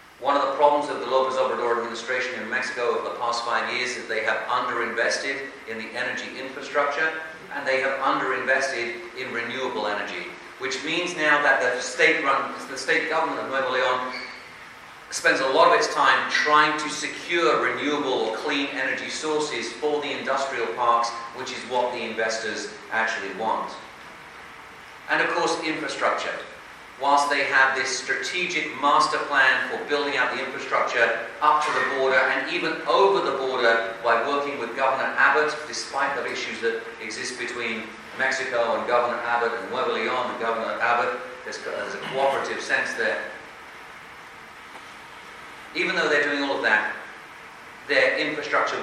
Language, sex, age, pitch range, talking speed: English, male, 40-59, 120-150 Hz, 160 wpm